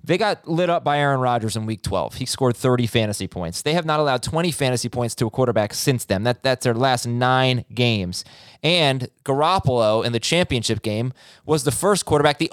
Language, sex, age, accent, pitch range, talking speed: English, male, 20-39, American, 115-155 Hz, 205 wpm